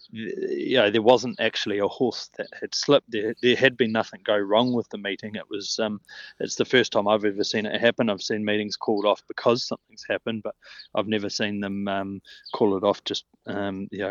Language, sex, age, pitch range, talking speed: English, male, 20-39, 105-120 Hz, 225 wpm